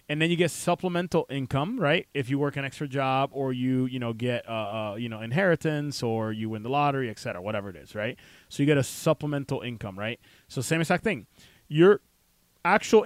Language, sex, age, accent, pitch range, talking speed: English, male, 20-39, American, 115-140 Hz, 215 wpm